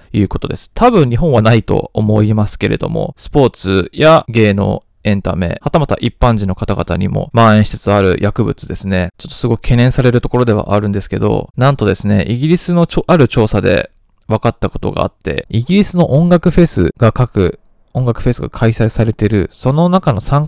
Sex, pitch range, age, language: male, 105-145 Hz, 20-39, Japanese